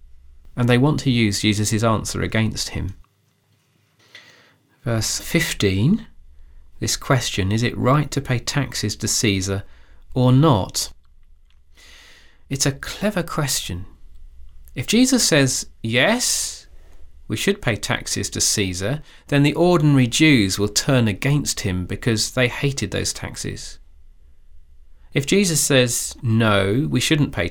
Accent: British